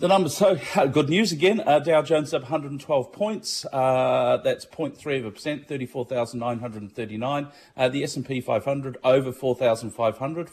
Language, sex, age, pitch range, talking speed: English, male, 50-69, 105-130 Hz, 130 wpm